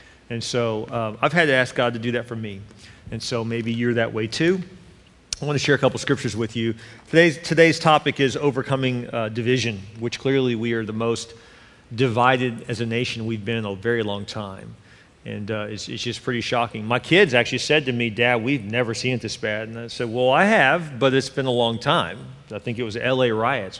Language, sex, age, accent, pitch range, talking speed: English, male, 40-59, American, 115-145 Hz, 230 wpm